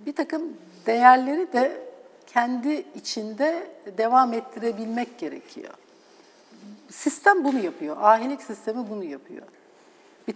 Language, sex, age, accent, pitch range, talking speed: Turkish, female, 60-79, native, 215-320 Hz, 100 wpm